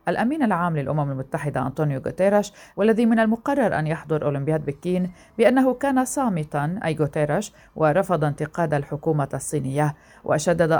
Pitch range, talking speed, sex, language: 145-170 Hz, 130 wpm, female, Arabic